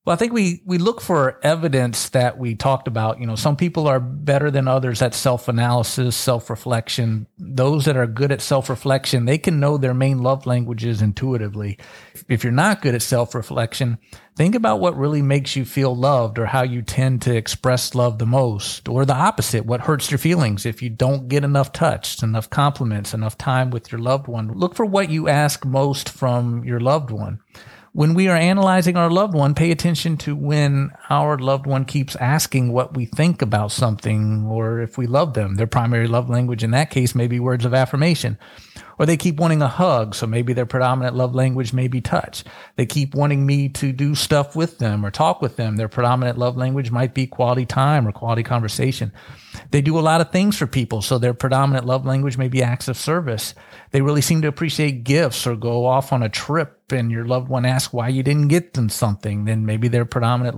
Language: English